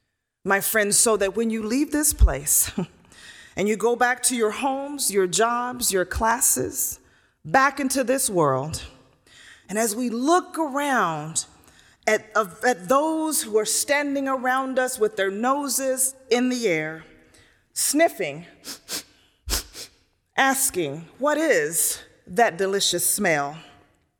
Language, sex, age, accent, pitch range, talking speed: English, female, 30-49, American, 195-290 Hz, 125 wpm